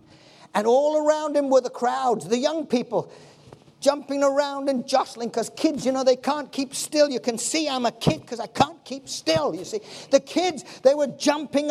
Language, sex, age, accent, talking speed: English, male, 50-69, British, 205 wpm